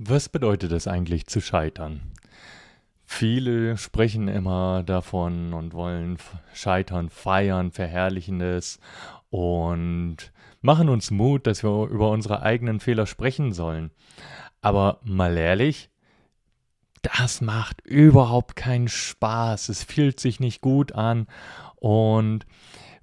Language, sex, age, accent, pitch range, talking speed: German, male, 30-49, German, 90-120 Hz, 110 wpm